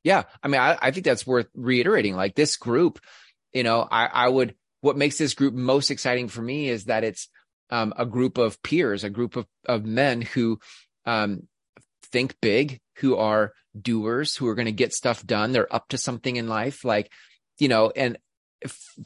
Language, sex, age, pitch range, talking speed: English, male, 30-49, 110-130 Hz, 200 wpm